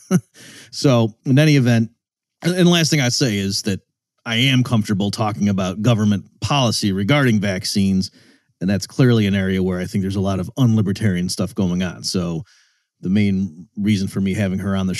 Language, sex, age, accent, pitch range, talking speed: English, male, 30-49, American, 90-115 Hz, 190 wpm